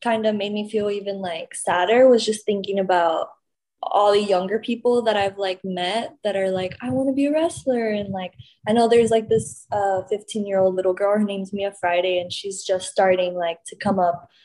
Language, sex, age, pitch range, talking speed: English, female, 20-39, 185-245 Hz, 225 wpm